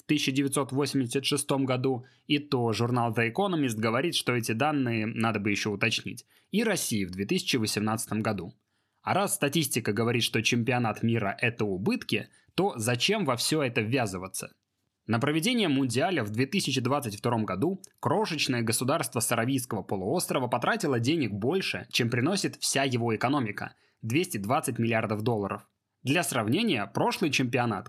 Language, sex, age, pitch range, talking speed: Russian, male, 20-39, 115-145 Hz, 130 wpm